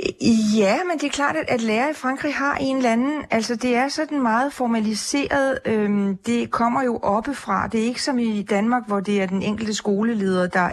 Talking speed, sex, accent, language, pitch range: 200 wpm, female, native, Danish, 200-245 Hz